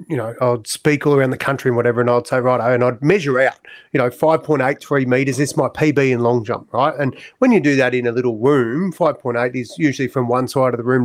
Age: 30-49